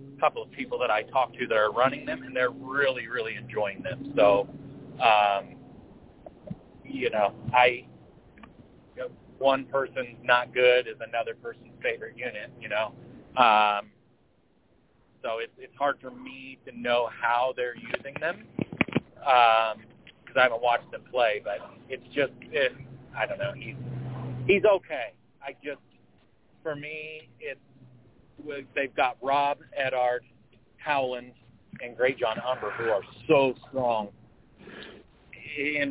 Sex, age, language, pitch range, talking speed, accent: male, 40-59, English, 115-135 Hz, 140 wpm, American